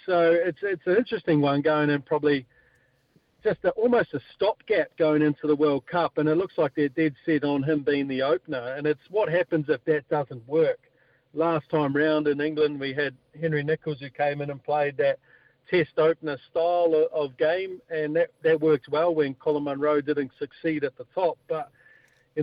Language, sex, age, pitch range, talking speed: English, male, 50-69, 145-165 Hz, 200 wpm